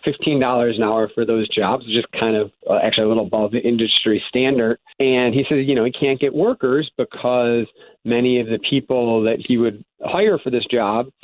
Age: 40-59